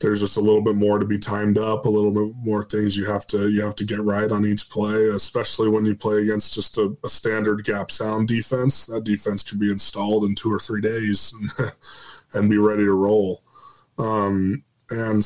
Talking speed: 220 wpm